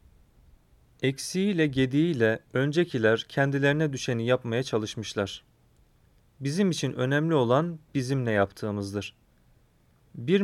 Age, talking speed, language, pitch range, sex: 40-59, 80 wpm, Turkish, 115-145 Hz, male